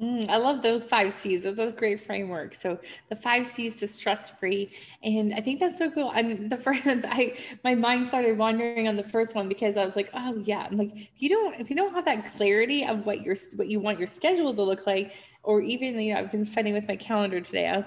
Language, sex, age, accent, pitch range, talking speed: English, female, 20-39, American, 200-250 Hz, 255 wpm